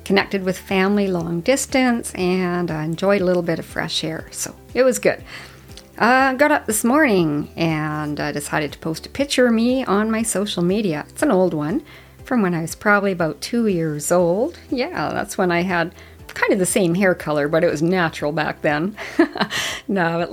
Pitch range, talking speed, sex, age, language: 170-220 Hz, 205 wpm, female, 50-69, English